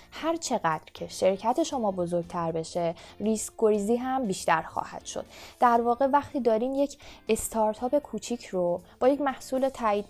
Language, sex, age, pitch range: Persian, female, 20-39, 195-255 Hz